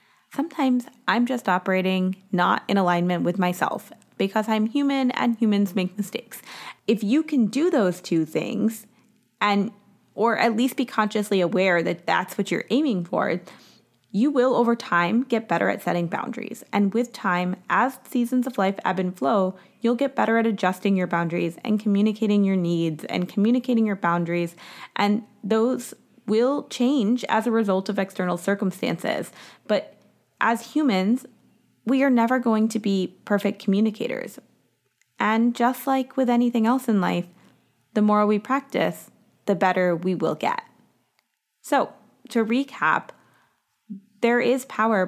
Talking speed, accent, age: 150 wpm, American, 20-39